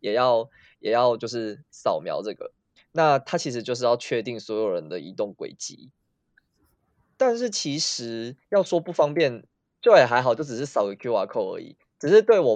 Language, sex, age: Chinese, male, 20-39